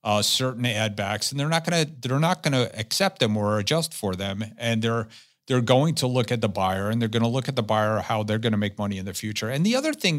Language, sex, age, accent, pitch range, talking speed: English, male, 50-69, American, 105-130 Hz, 275 wpm